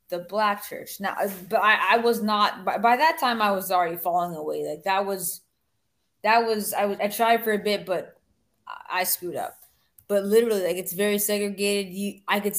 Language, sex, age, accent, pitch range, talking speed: English, female, 20-39, American, 180-215 Hz, 210 wpm